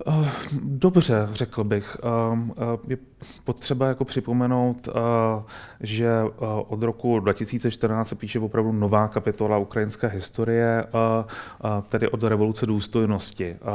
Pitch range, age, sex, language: 100-115 Hz, 30-49, male, Czech